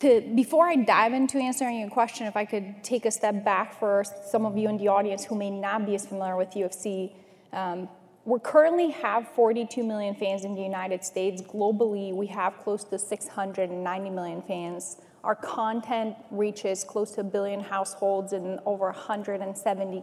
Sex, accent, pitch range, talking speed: female, American, 195-220 Hz, 175 wpm